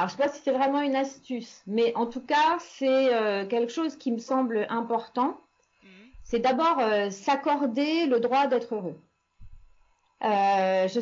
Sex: female